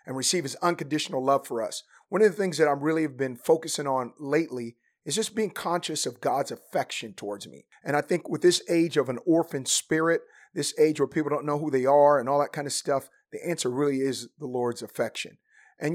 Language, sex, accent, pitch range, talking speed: English, male, American, 135-165 Hz, 230 wpm